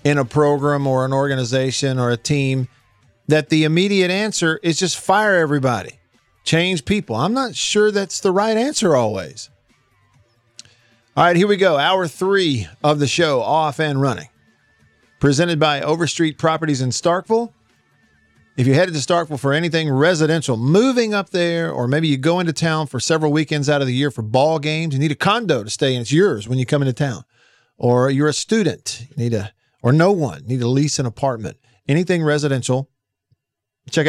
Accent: American